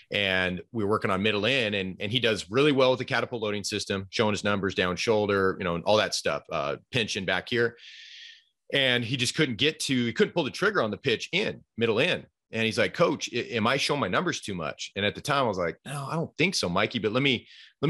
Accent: American